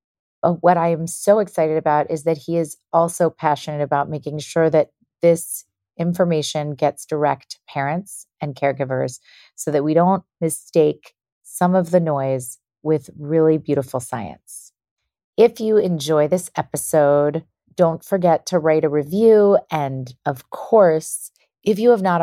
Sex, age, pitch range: female, 30-49, 150-180 Hz